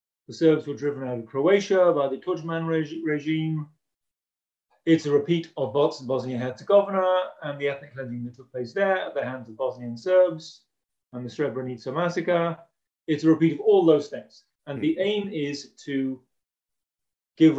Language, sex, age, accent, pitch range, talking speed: English, male, 30-49, British, 130-170 Hz, 170 wpm